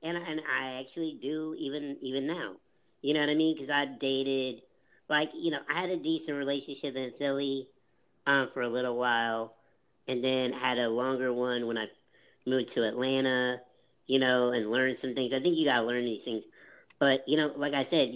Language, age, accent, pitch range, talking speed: English, 30-49, American, 125-155 Hz, 205 wpm